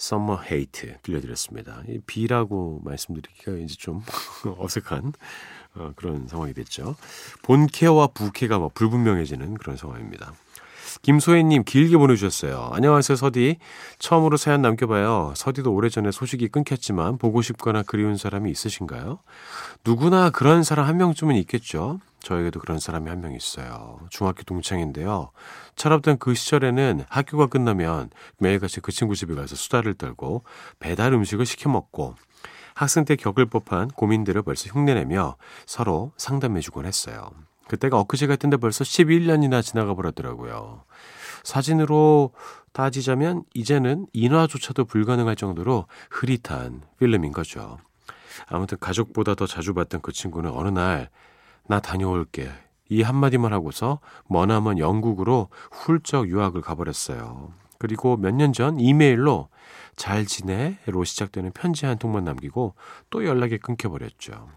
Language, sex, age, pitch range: Korean, male, 40-59, 95-135 Hz